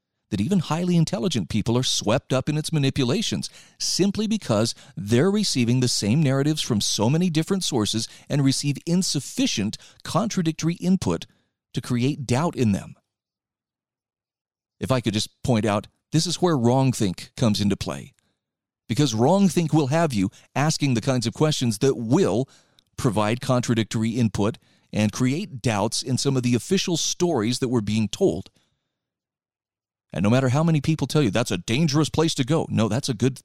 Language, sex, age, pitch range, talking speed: English, male, 40-59, 115-155 Hz, 165 wpm